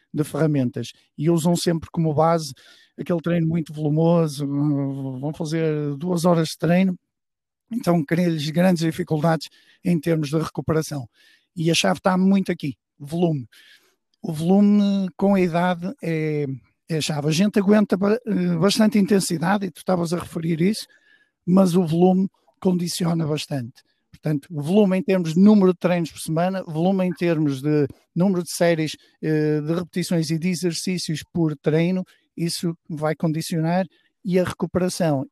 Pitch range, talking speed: 150-180 Hz, 150 wpm